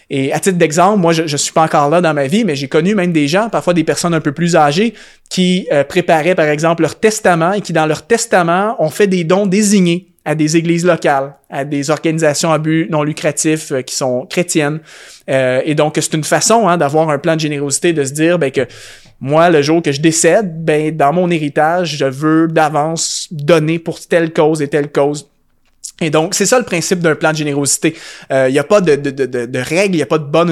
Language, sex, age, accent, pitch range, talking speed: French, male, 20-39, Canadian, 150-180 Hz, 240 wpm